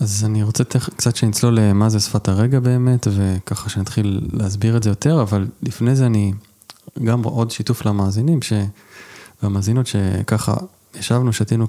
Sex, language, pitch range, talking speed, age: male, Hebrew, 105-120 Hz, 160 wpm, 20-39